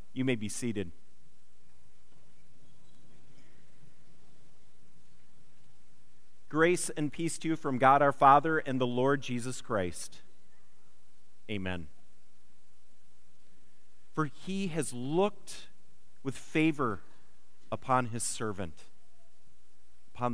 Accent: American